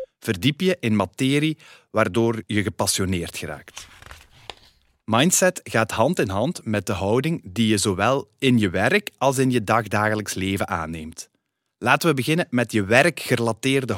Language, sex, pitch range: Dutch, male, 100-140 Hz